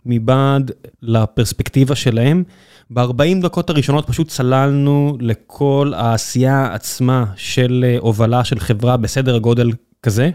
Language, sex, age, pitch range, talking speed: Hebrew, male, 20-39, 125-145 Hz, 105 wpm